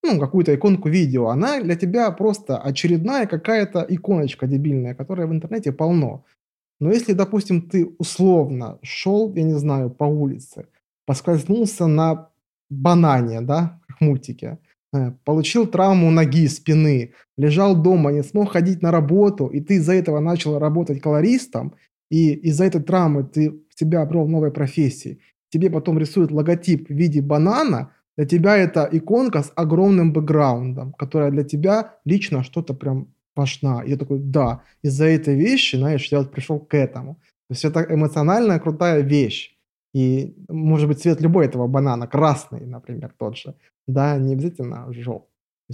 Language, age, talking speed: Russian, 20-39, 150 wpm